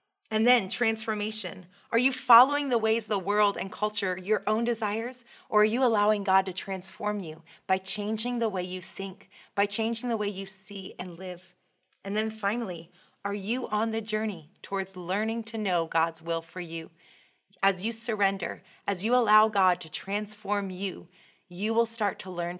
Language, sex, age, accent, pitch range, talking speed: English, female, 30-49, American, 180-215 Hz, 180 wpm